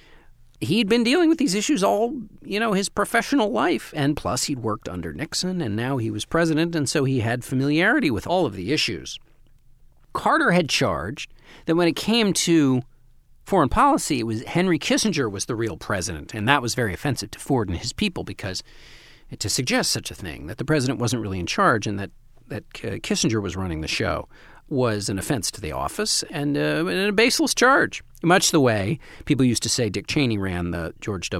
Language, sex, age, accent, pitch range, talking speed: English, male, 40-59, American, 105-160 Hz, 205 wpm